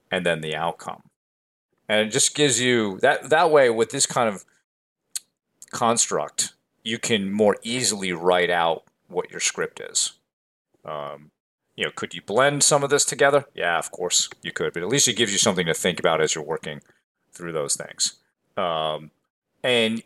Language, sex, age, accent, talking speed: English, male, 40-59, American, 180 wpm